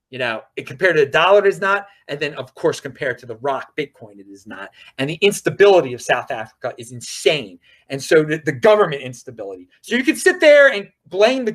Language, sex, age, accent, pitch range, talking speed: English, male, 30-49, American, 155-245 Hz, 225 wpm